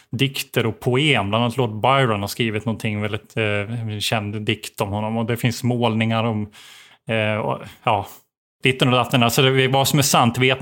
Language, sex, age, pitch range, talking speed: Swedish, male, 30-49, 115-135 Hz, 190 wpm